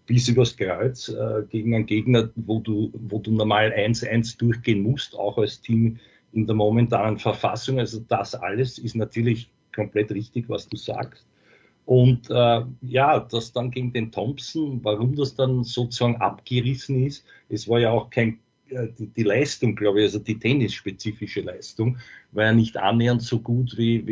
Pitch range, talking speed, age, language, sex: 110-125 Hz, 165 wpm, 50-69, English, male